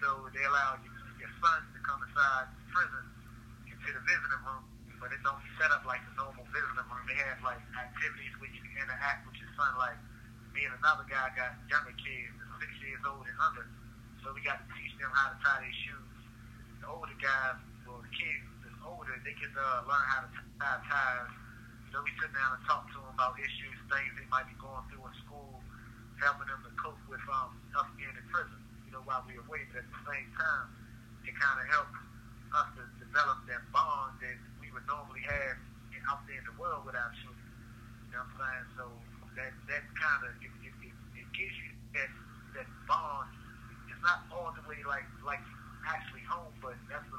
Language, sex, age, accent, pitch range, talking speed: English, male, 30-49, American, 115-135 Hz, 210 wpm